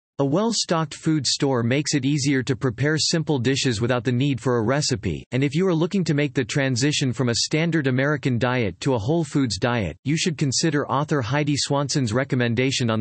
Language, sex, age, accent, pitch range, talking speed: English, male, 40-59, American, 120-150 Hz, 205 wpm